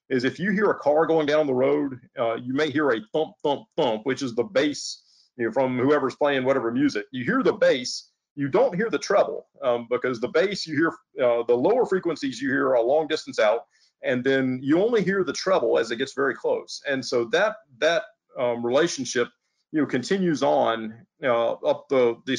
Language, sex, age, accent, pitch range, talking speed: English, male, 40-59, American, 130-180 Hz, 215 wpm